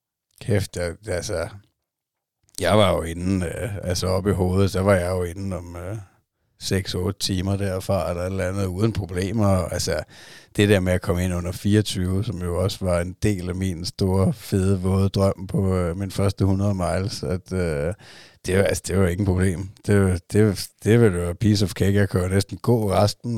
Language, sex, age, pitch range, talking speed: Danish, male, 60-79, 95-105 Hz, 190 wpm